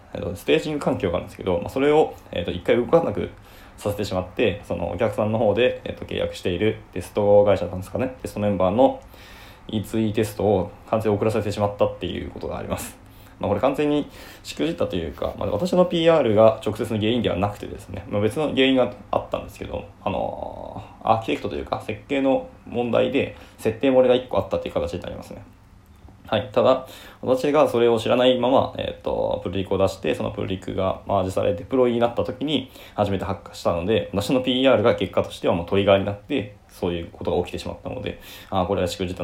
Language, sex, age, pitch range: Japanese, male, 20-39, 95-120 Hz